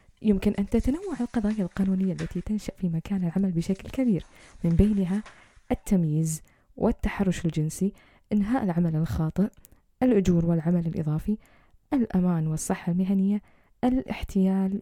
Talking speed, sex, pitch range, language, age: 110 wpm, female, 175-225 Hz, Arabic, 10-29